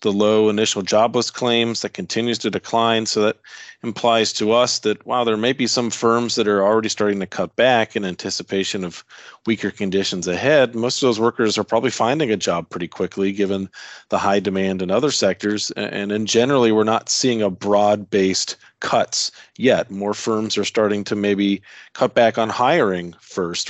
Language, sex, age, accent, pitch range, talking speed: English, male, 40-59, American, 100-115 Hz, 185 wpm